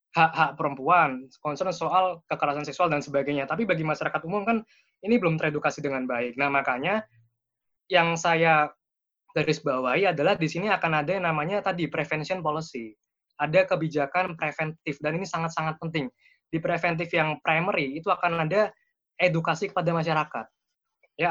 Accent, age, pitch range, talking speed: native, 20-39, 150-180 Hz, 145 wpm